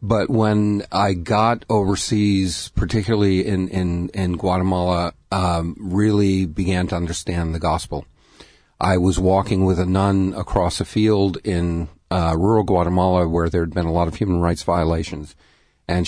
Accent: American